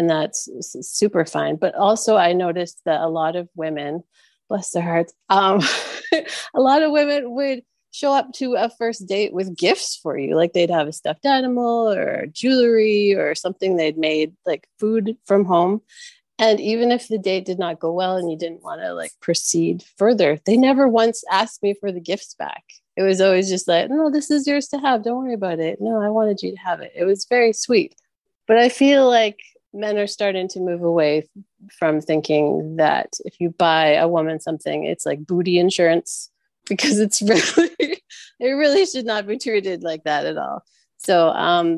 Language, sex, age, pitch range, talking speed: English, female, 30-49, 170-230 Hz, 200 wpm